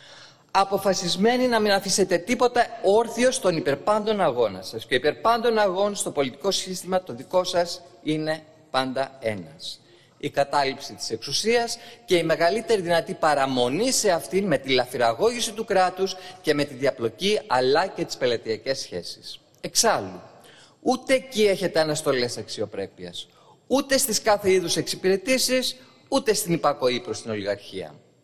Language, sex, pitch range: Greek, male, 130-200 Hz